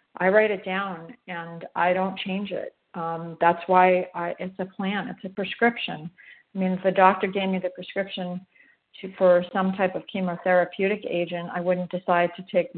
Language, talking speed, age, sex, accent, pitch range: English, 180 wpm, 50-69, female, American, 175-195 Hz